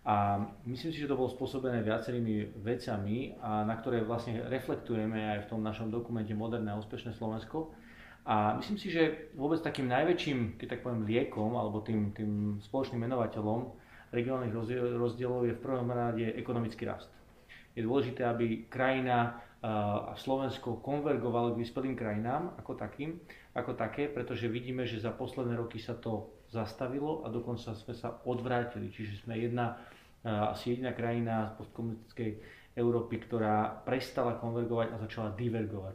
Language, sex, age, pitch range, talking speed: Slovak, male, 30-49, 110-125 Hz, 150 wpm